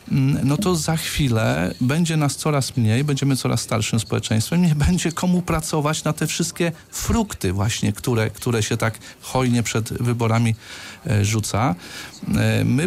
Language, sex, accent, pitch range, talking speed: Polish, male, native, 100-135 Hz, 140 wpm